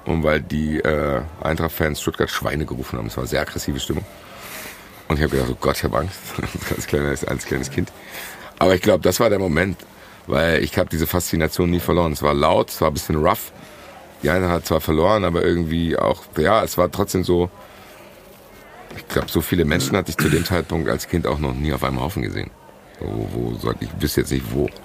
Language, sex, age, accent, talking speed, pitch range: German, male, 50-69, German, 220 wpm, 70-90 Hz